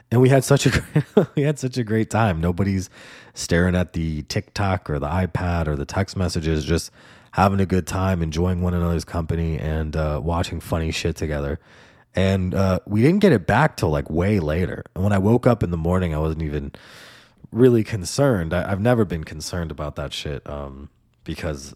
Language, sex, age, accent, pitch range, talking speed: English, male, 20-39, American, 80-110 Hz, 200 wpm